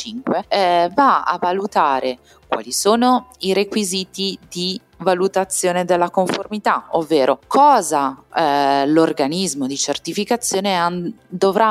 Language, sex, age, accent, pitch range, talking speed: Italian, female, 30-49, native, 140-210 Hz, 95 wpm